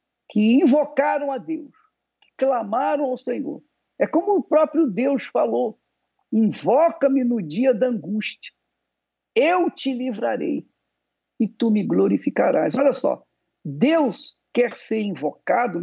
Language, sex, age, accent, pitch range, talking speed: Portuguese, male, 50-69, Brazilian, 210-285 Hz, 120 wpm